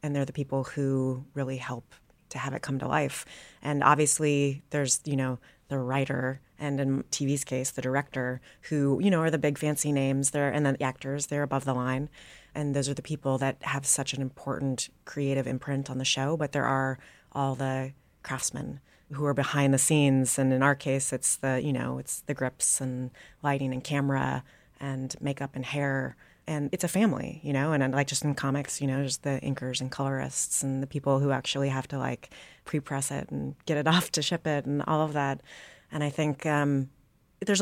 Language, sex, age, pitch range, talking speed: English, female, 30-49, 130-145 Hz, 210 wpm